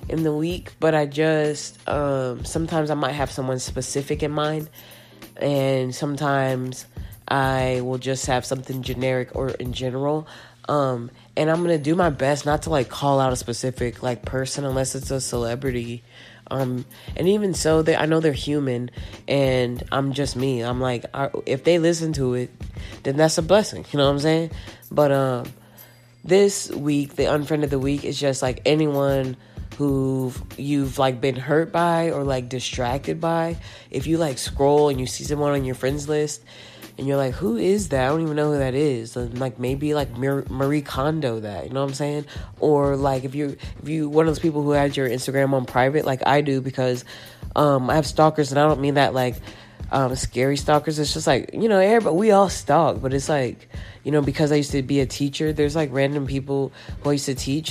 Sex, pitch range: female, 130-150 Hz